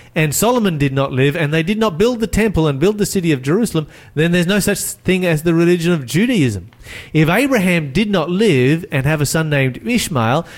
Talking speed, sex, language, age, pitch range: 220 wpm, male, English, 30-49, 125-175 Hz